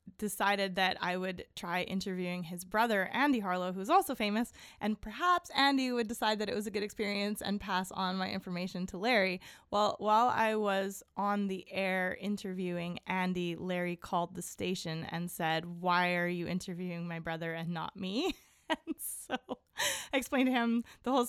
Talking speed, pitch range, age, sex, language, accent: 180 wpm, 180-220 Hz, 20-39, female, English, American